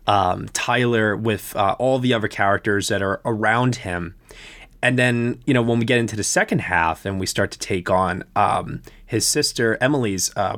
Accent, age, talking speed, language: American, 20-39, 195 wpm, English